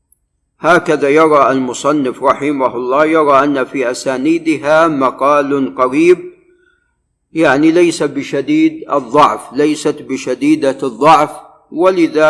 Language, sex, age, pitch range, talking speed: Arabic, male, 50-69, 140-190 Hz, 95 wpm